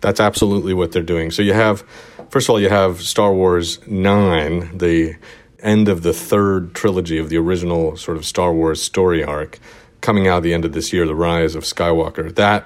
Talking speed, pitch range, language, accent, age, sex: 210 wpm, 80-95 Hz, English, American, 40-59, male